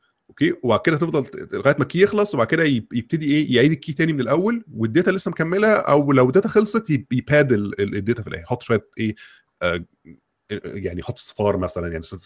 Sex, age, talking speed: male, 20-39, 175 wpm